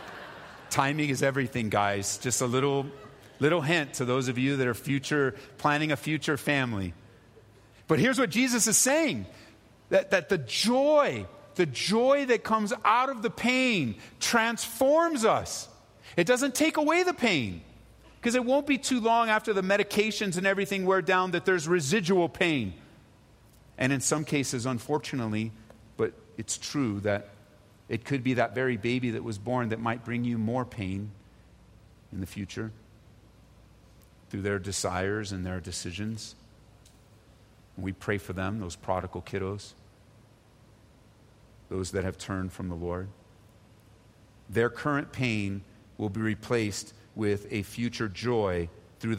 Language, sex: English, male